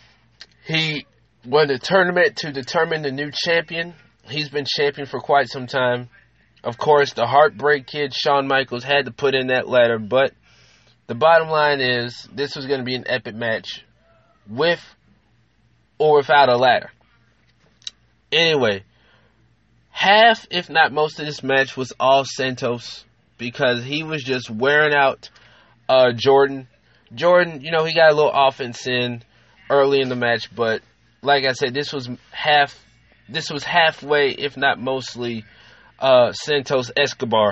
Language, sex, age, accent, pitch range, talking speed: English, male, 20-39, American, 120-150 Hz, 150 wpm